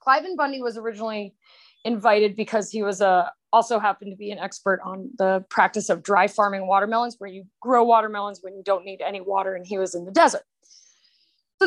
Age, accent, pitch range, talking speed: 20-39, American, 210-265 Hz, 205 wpm